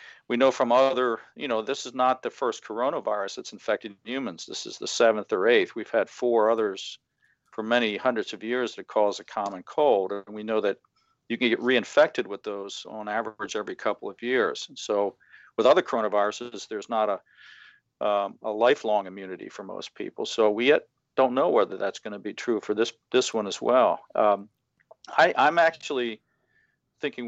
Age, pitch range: 50-69, 105-140 Hz